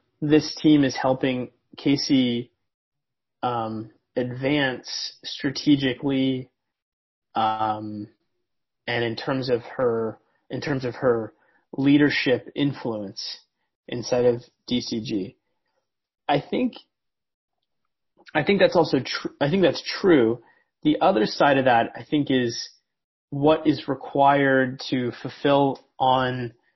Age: 30-49